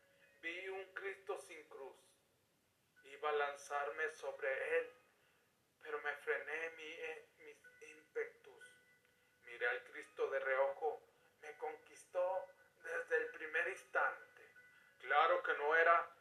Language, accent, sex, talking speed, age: Spanish, Mexican, male, 115 wpm, 40-59